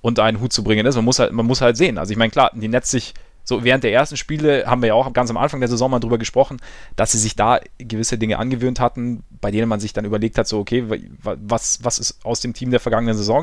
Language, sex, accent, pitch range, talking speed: German, male, German, 110-135 Hz, 285 wpm